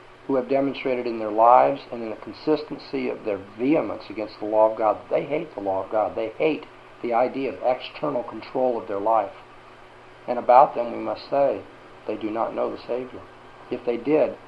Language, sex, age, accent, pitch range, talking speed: English, male, 50-69, American, 105-135 Hz, 205 wpm